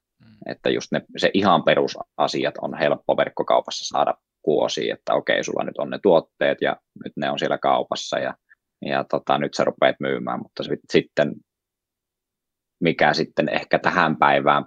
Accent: native